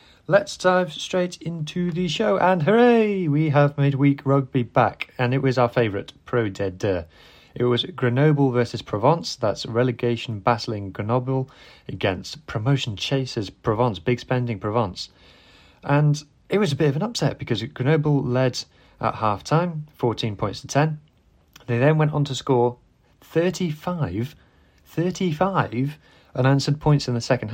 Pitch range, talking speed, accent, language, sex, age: 115-150 Hz, 140 wpm, British, English, male, 30-49